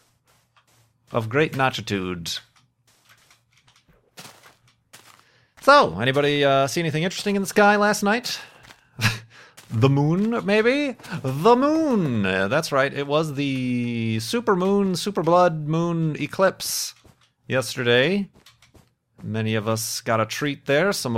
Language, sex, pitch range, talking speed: English, male, 115-170 Hz, 110 wpm